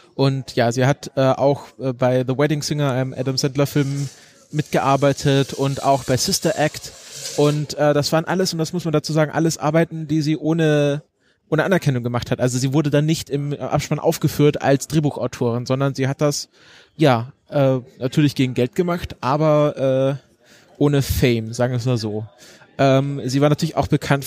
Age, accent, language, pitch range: 20-39, German, German, 130-150 Hz